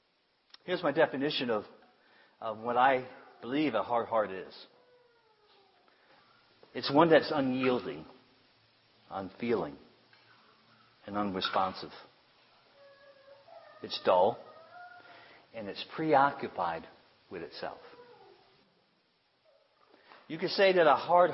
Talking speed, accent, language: 90 wpm, American, English